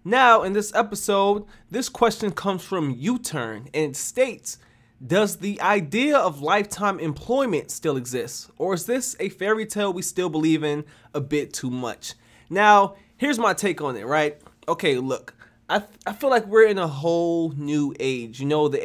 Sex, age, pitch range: male, 20-39, 140-185 Hz